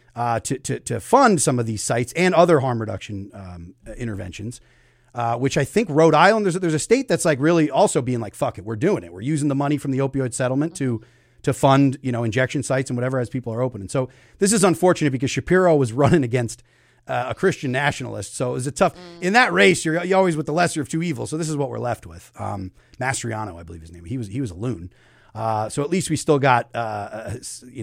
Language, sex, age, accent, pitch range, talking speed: English, male, 30-49, American, 120-155 Hz, 250 wpm